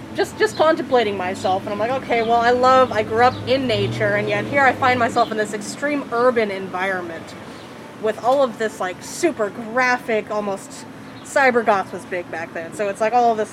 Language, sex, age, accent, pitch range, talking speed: English, female, 20-39, American, 200-240 Hz, 205 wpm